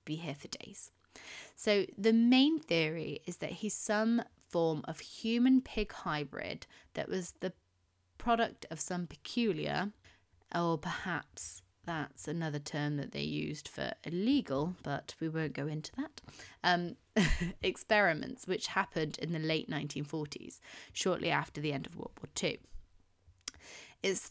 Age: 30-49